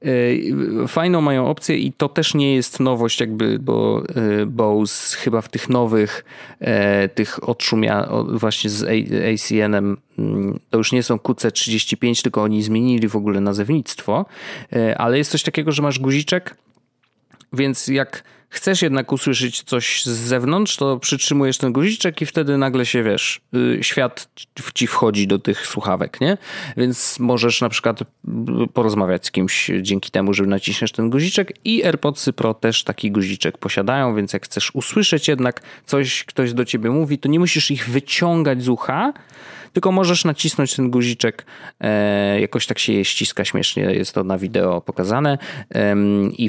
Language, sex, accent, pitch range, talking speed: Polish, male, native, 105-145 Hz, 150 wpm